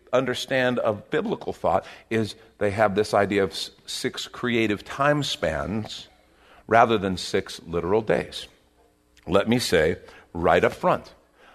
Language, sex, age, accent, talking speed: English, male, 50-69, American, 130 wpm